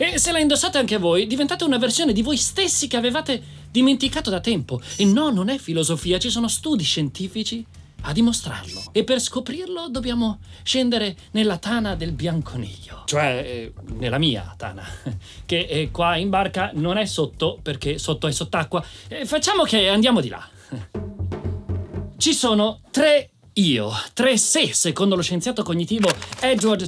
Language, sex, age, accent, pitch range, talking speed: Italian, male, 30-49, native, 160-260 Hz, 160 wpm